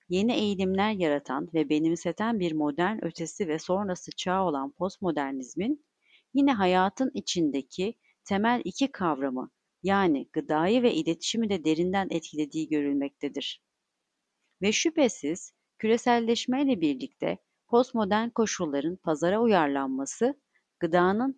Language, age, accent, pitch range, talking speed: Turkish, 40-59, native, 160-230 Hz, 105 wpm